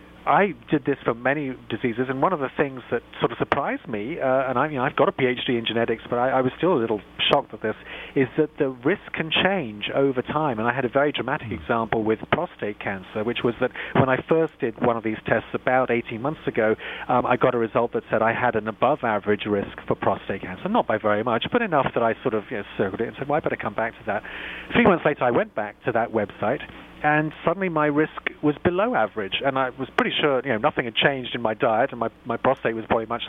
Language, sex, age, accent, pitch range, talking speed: English, male, 40-59, British, 115-145 Hz, 265 wpm